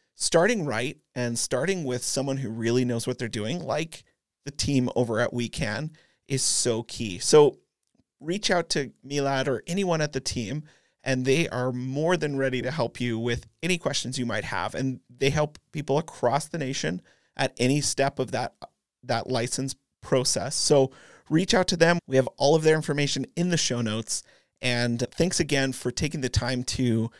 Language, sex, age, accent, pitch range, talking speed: English, male, 30-49, American, 125-155 Hz, 185 wpm